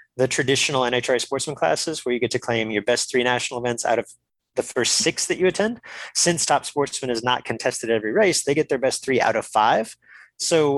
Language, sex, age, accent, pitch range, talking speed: English, male, 30-49, American, 120-155 Hz, 230 wpm